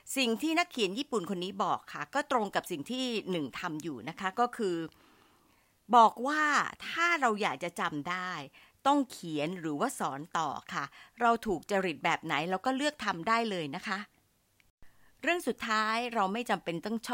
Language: Thai